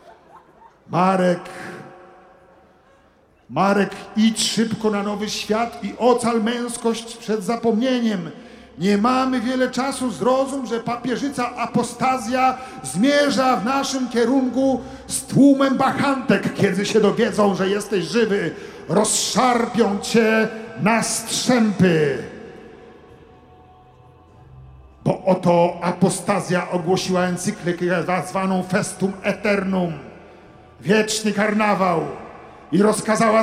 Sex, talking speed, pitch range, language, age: male, 90 wpm, 180-235 Hz, Polish, 50-69